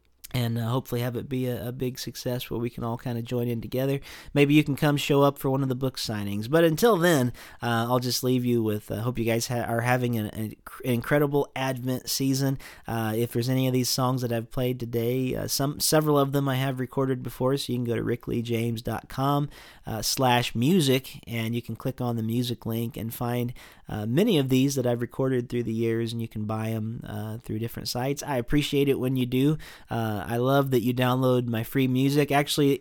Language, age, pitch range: English, 40-59, 120-140 Hz